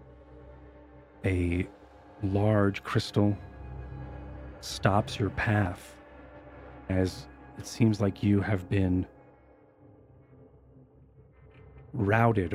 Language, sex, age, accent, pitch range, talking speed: English, male, 30-49, American, 90-110 Hz, 65 wpm